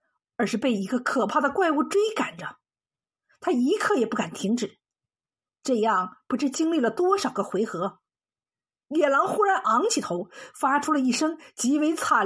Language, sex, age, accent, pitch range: Chinese, female, 50-69, native, 220-320 Hz